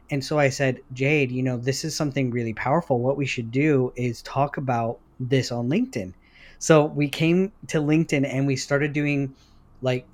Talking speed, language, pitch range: 190 wpm, English, 125-140 Hz